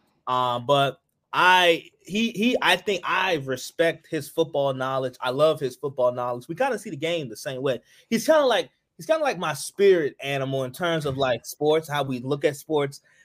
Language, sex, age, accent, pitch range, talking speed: English, male, 20-39, American, 140-180 Hz, 215 wpm